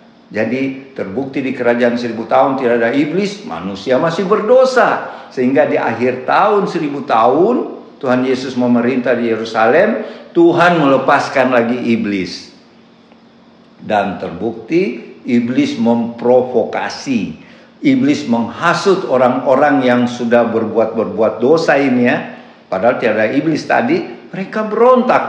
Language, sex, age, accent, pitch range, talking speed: Indonesian, male, 50-69, native, 110-175 Hz, 105 wpm